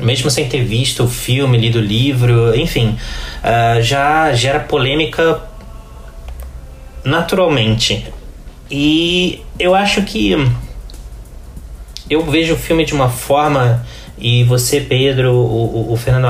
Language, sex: Portuguese, male